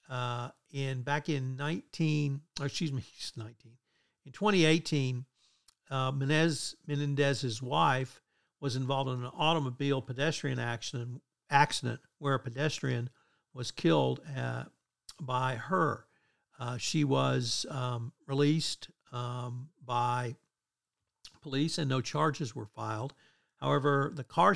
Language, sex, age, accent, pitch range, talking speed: English, male, 60-79, American, 125-145 Hz, 115 wpm